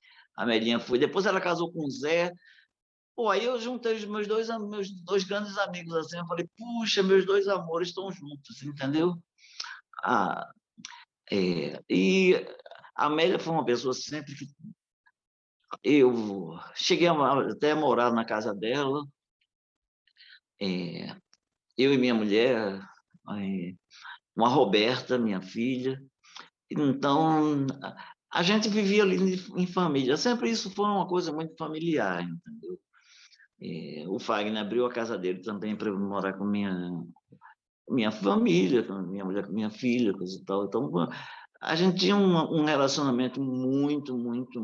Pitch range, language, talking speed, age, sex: 110-180 Hz, Portuguese, 140 wpm, 50-69, male